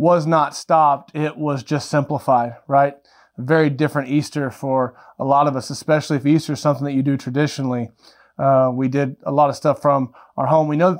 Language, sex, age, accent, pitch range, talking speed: English, male, 30-49, American, 135-155 Hz, 205 wpm